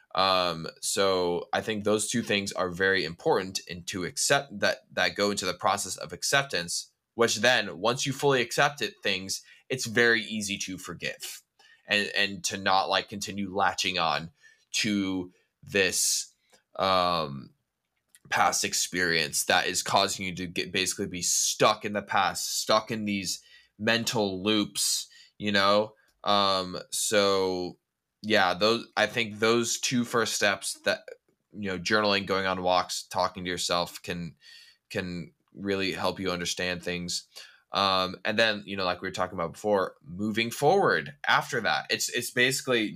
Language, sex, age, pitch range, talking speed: English, male, 10-29, 95-110 Hz, 155 wpm